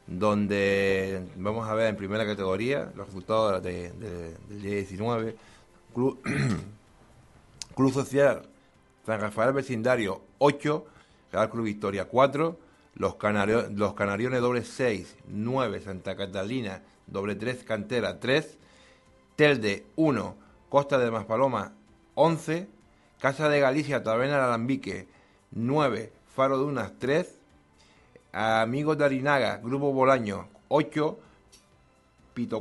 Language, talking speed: Spanish, 110 wpm